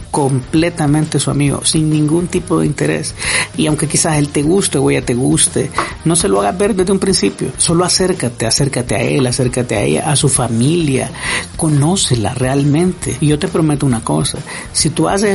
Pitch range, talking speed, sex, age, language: 125-160 Hz, 190 wpm, male, 50-69, Spanish